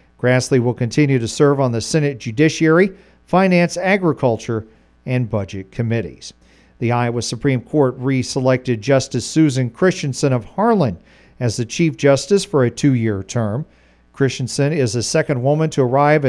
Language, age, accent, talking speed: English, 50-69, American, 145 wpm